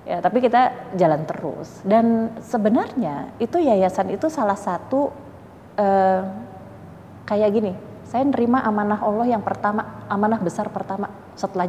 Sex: female